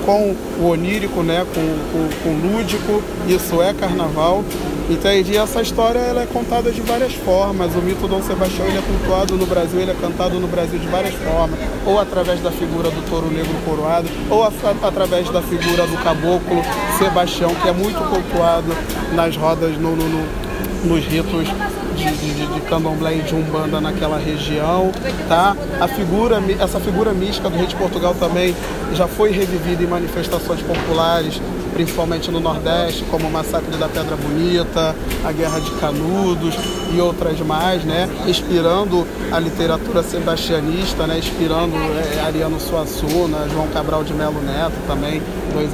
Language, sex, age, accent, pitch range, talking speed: Portuguese, male, 20-39, Brazilian, 165-190 Hz, 160 wpm